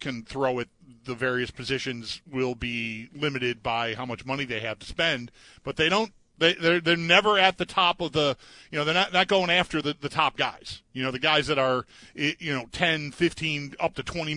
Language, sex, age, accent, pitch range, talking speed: English, male, 40-59, American, 125-175 Hz, 215 wpm